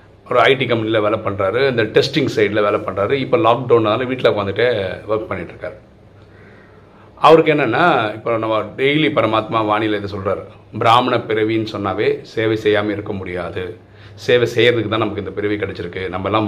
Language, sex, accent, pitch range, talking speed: Tamil, male, native, 105-130 Hz, 145 wpm